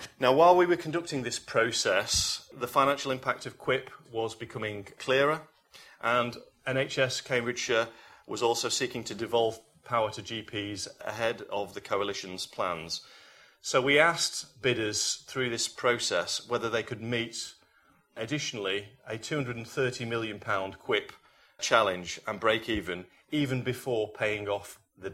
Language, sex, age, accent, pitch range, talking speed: English, male, 30-49, British, 105-130 Hz, 130 wpm